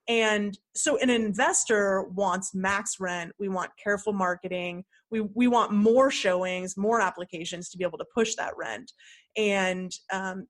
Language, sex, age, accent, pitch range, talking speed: English, female, 20-39, American, 185-215 Hz, 155 wpm